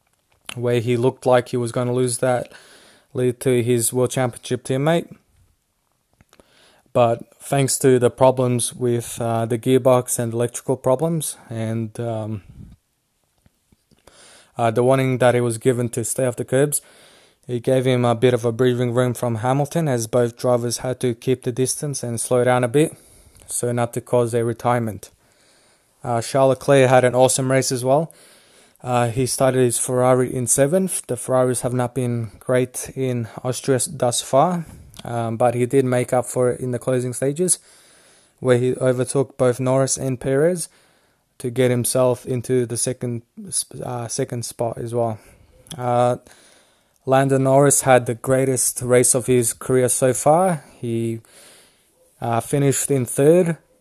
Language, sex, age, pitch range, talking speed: English, male, 20-39, 120-130 Hz, 160 wpm